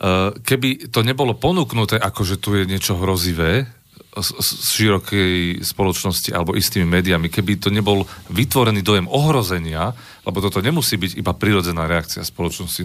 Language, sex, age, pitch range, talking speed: Slovak, male, 40-59, 90-110 Hz, 150 wpm